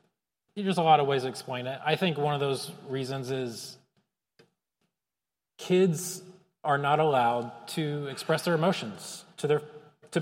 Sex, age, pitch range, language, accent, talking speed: male, 30-49, 130-175 Hz, English, American, 155 wpm